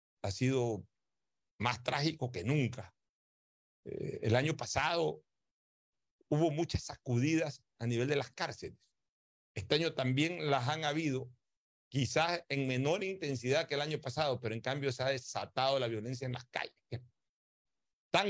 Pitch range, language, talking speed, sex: 115-145 Hz, Spanish, 145 wpm, male